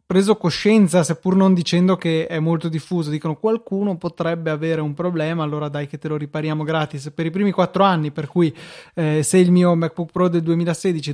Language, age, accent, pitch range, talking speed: Italian, 20-39, native, 155-180 Hz, 200 wpm